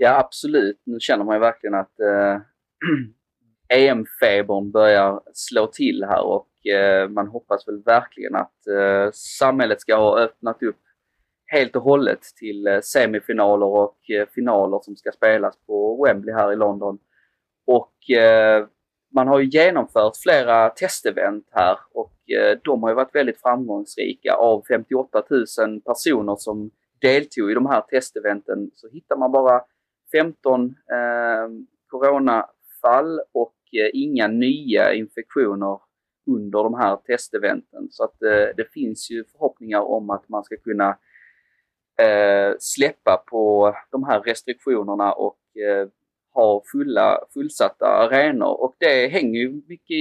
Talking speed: 140 wpm